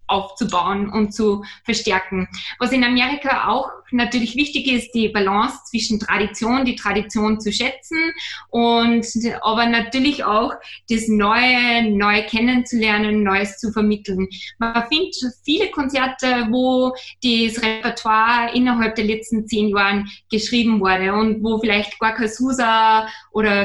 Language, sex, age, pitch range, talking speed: German, female, 20-39, 205-245 Hz, 130 wpm